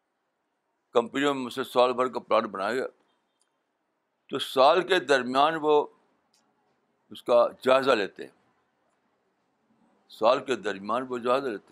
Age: 60-79